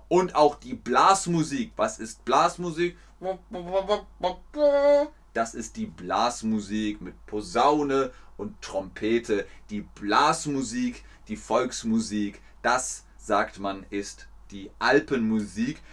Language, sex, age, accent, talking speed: German, male, 30-49, German, 95 wpm